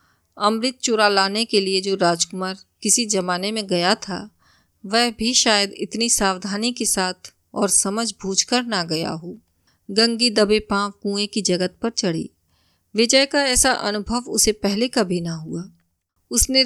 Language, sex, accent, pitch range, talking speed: Hindi, female, native, 185-230 Hz, 155 wpm